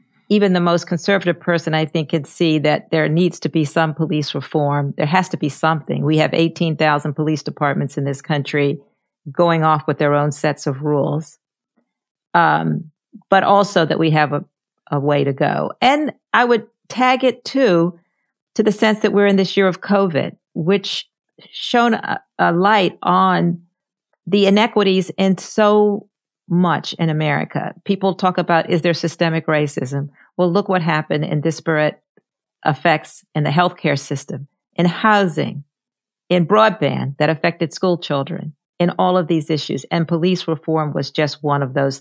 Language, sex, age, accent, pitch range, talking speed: English, female, 50-69, American, 150-190 Hz, 165 wpm